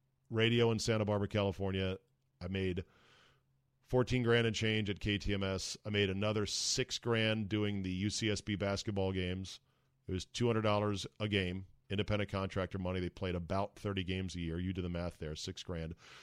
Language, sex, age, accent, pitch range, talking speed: English, male, 40-59, American, 95-125 Hz, 185 wpm